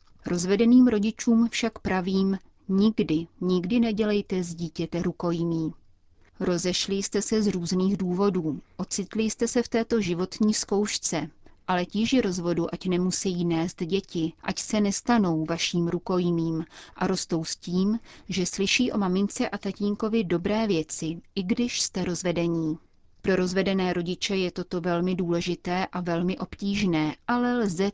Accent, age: native, 30-49